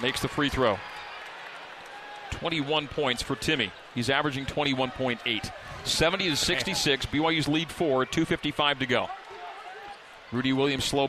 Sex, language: male, English